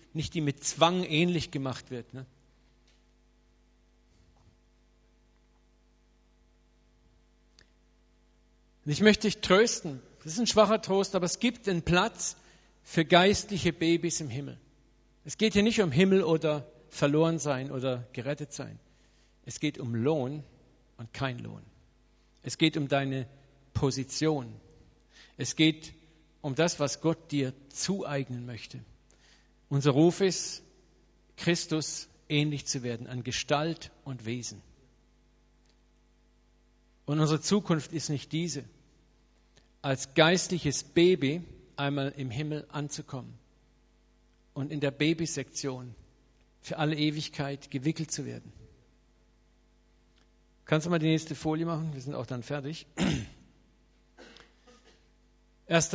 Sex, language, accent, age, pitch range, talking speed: male, German, German, 50-69, 125-160 Hz, 115 wpm